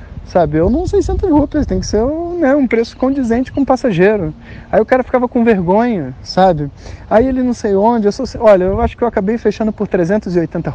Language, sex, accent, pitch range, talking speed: Portuguese, male, Brazilian, 125-185 Hz, 235 wpm